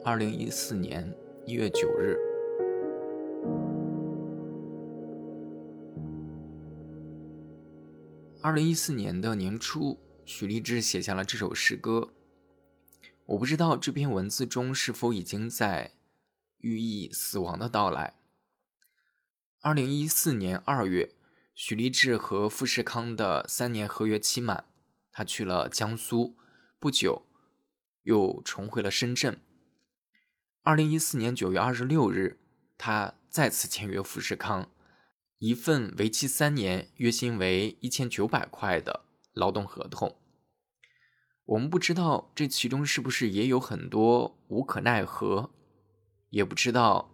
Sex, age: male, 20-39